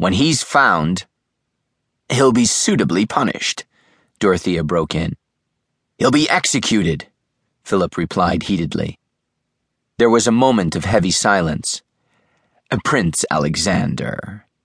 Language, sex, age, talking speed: English, male, 40-59, 100 wpm